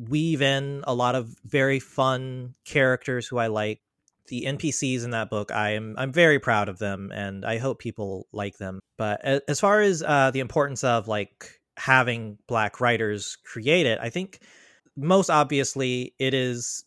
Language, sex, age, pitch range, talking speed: English, male, 30-49, 115-140 Hz, 175 wpm